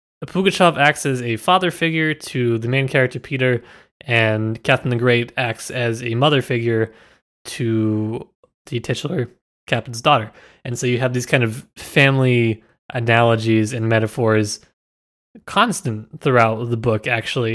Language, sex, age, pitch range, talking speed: English, male, 20-39, 110-130 Hz, 140 wpm